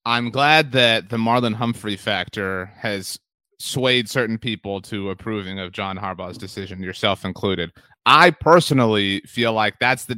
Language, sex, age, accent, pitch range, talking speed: English, male, 30-49, American, 115-145 Hz, 145 wpm